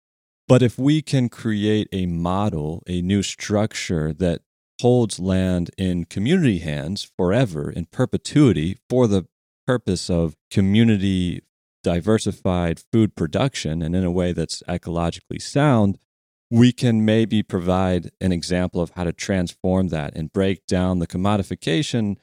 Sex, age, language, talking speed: male, 40-59, English, 135 wpm